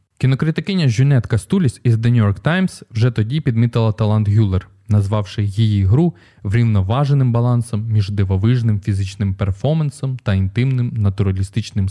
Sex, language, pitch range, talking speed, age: male, Ukrainian, 100-130 Hz, 125 wpm, 20-39